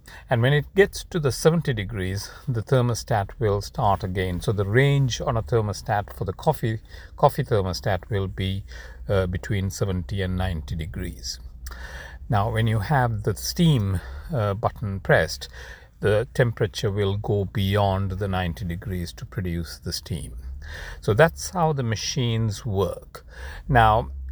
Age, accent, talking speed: 60-79, Indian, 150 wpm